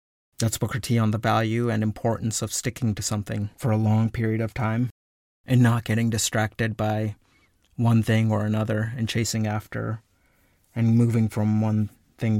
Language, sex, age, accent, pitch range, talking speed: English, male, 30-49, American, 105-125 Hz, 170 wpm